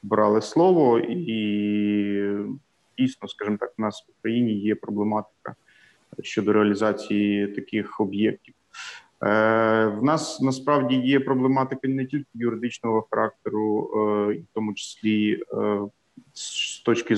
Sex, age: male, 30-49